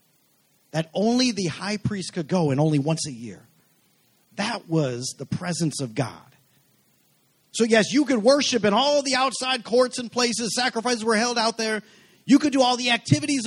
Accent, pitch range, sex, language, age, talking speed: American, 155-215 Hz, male, English, 40-59, 185 wpm